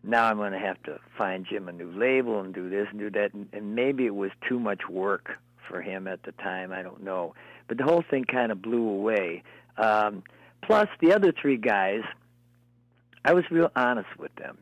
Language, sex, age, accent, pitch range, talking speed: English, male, 60-79, American, 95-120 Hz, 220 wpm